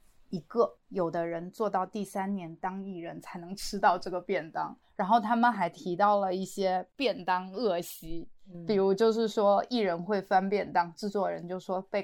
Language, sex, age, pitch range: Chinese, female, 20-39, 180-220 Hz